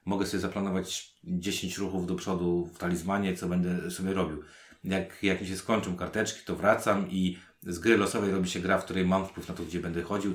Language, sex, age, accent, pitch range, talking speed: Polish, male, 30-49, native, 90-110 Hz, 215 wpm